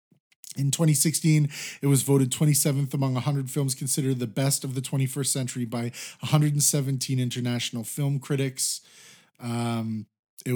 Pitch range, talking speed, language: 125-145 Hz, 130 wpm, English